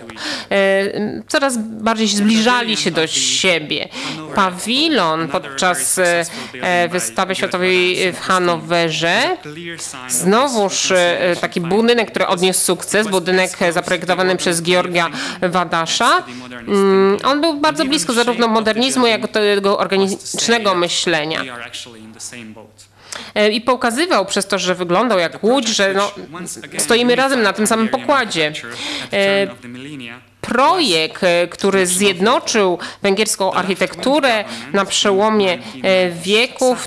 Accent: native